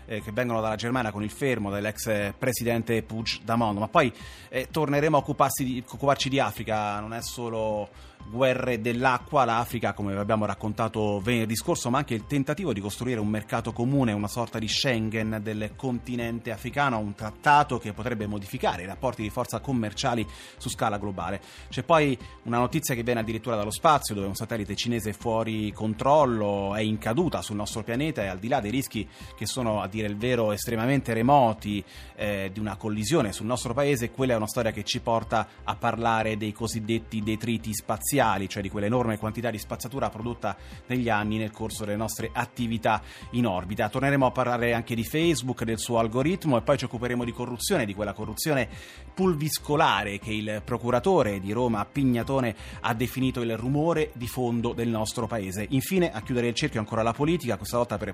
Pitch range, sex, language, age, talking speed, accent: 105-125 Hz, male, Italian, 30-49, 180 wpm, native